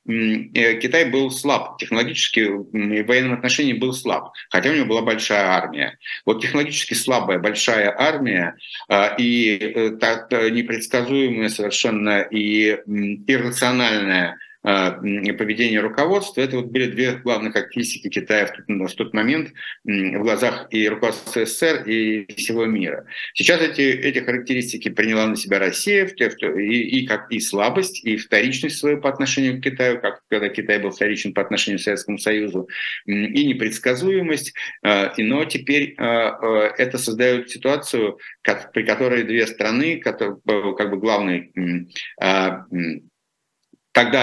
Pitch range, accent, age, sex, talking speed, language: 105-130 Hz, native, 60-79, male, 125 wpm, Russian